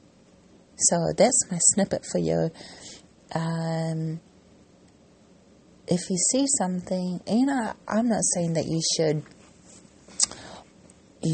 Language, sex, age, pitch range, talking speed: English, female, 30-49, 165-195 Hz, 110 wpm